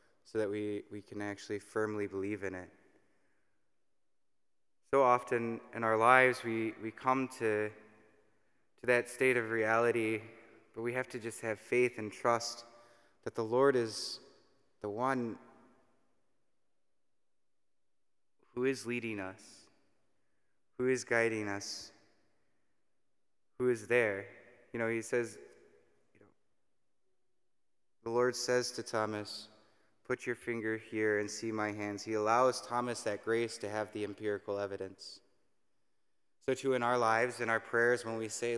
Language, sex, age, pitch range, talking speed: English, male, 20-39, 105-120 Hz, 140 wpm